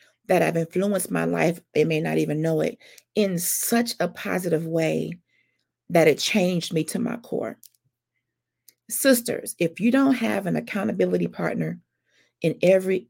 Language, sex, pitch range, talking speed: English, female, 165-230 Hz, 150 wpm